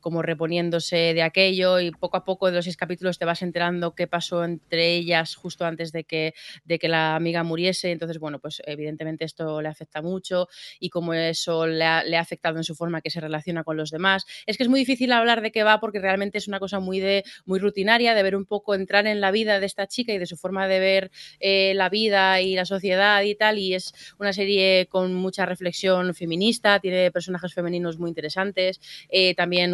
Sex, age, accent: female, 20-39, Spanish